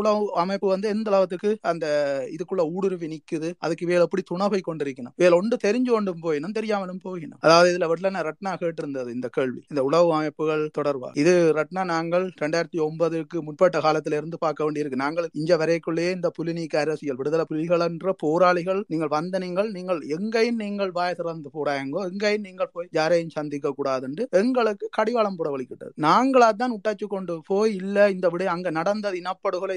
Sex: male